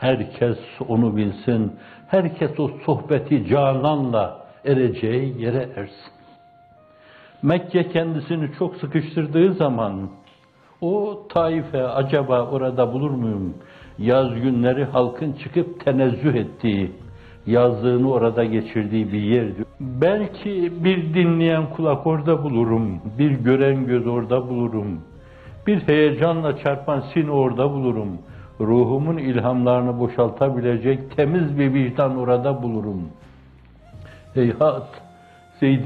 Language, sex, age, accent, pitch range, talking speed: Turkish, male, 60-79, native, 110-145 Hz, 100 wpm